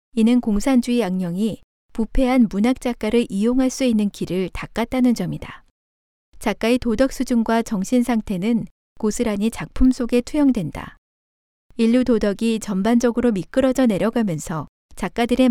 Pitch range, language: 195-245 Hz, Korean